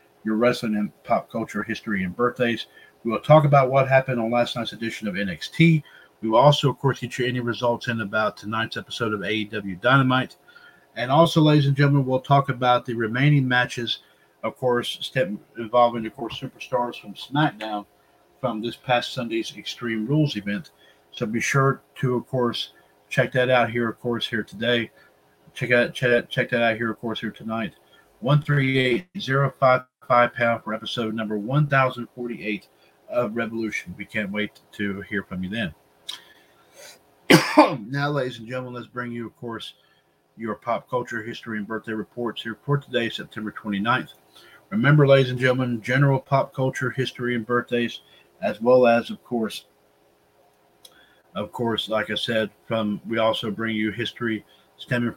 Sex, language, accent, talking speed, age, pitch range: male, English, American, 165 wpm, 50-69, 110-130 Hz